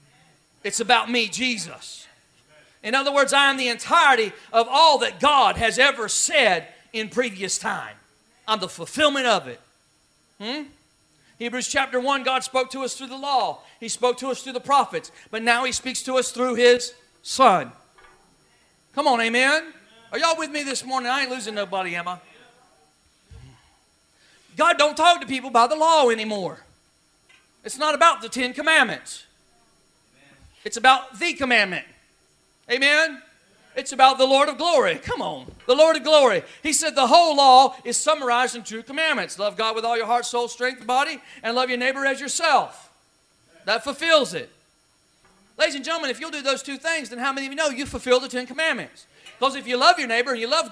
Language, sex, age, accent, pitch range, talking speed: English, male, 40-59, American, 230-285 Hz, 190 wpm